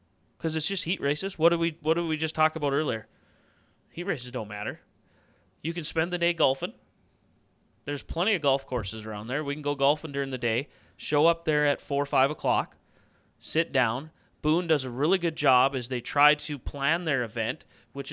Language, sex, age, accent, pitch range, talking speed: English, male, 30-49, American, 130-170 Hz, 200 wpm